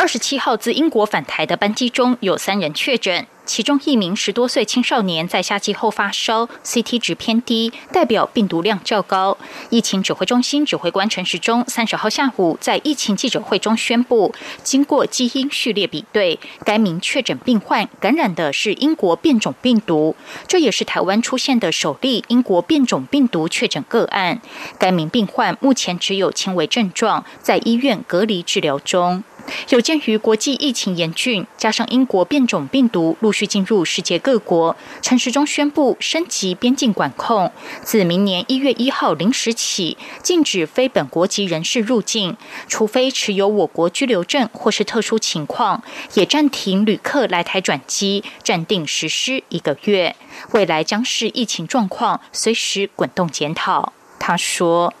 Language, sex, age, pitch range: German, female, 20-39, 190-255 Hz